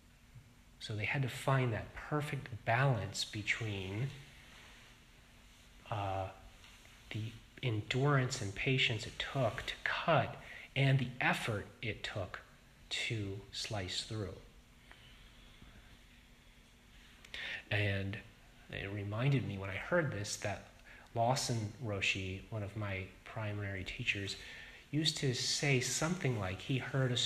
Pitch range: 100-125 Hz